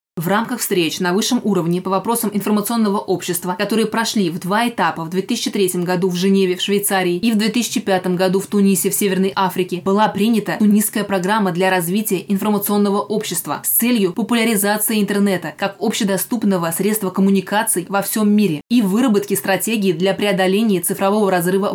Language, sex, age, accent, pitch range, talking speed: Russian, female, 20-39, native, 185-210 Hz, 155 wpm